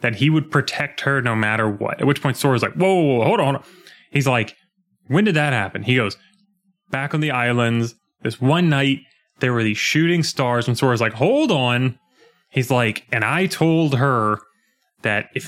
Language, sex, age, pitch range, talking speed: English, male, 20-39, 125-175 Hz, 205 wpm